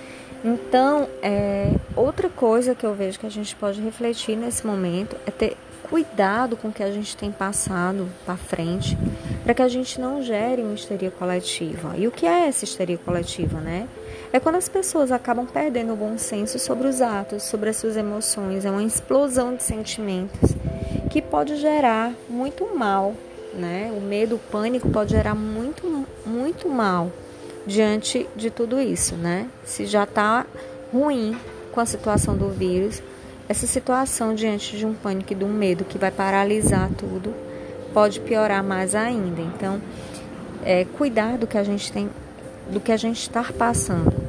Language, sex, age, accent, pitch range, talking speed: Portuguese, female, 20-39, Brazilian, 190-240 Hz, 170 wpm